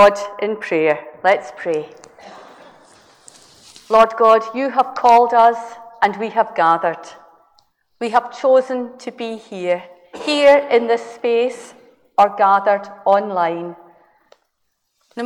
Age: 50-69